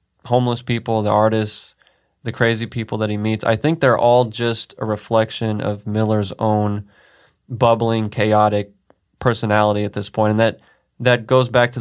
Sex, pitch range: male, 105-120 Hz